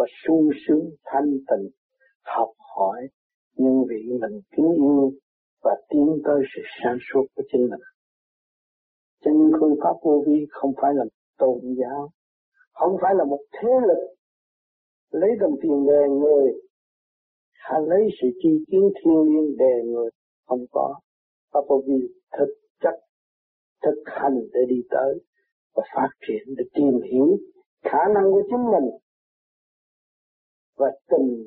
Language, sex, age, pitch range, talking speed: Vietnamese, male, 60-79, 130-200 Hz, 145 wpm